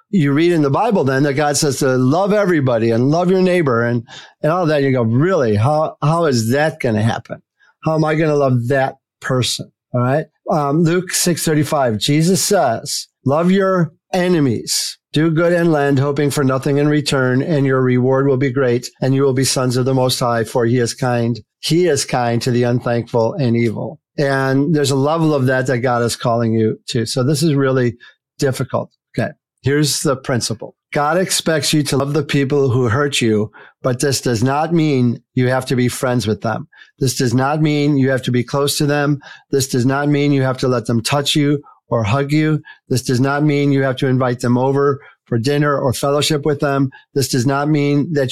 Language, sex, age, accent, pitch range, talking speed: English, male, 50-69, American, 125-150 Hz, 215 wpm